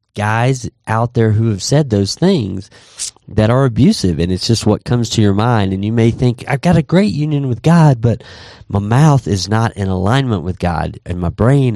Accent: American